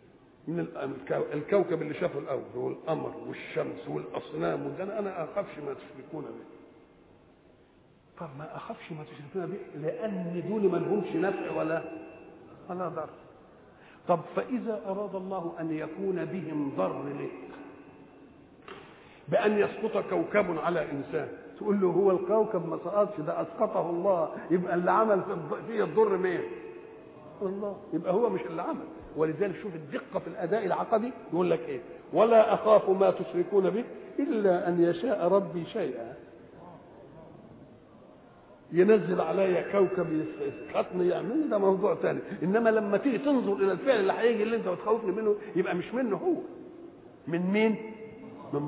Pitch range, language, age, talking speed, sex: 175-220 Hz, English, 50-69, 130 wpm, male